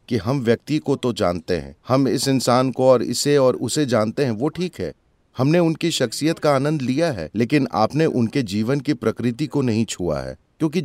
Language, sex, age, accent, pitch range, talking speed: English, male, 30-49, Indian, 115-155 Hz, 210 wpm